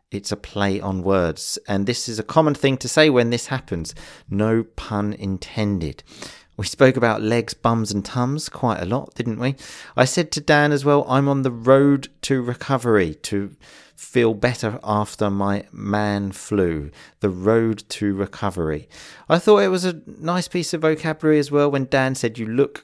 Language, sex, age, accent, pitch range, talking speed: English, male, 40-59, British, 100-135 Hz, 185 wpm